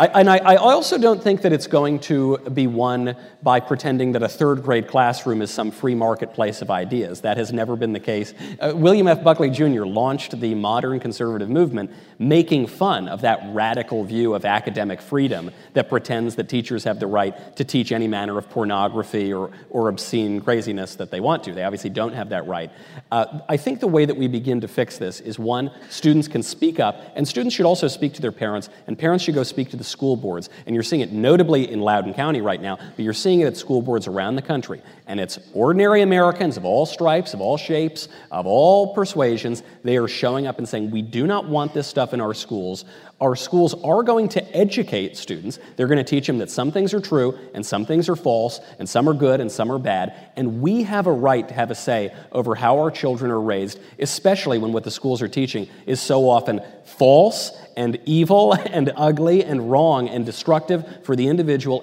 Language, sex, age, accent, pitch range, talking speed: English, male, 40-59, American, 115-155 Hz, 220 wpm